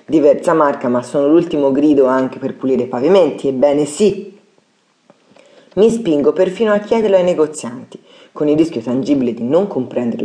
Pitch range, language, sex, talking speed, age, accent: 125-170 Hz, Italian, female, 160 wpm, 30-49, native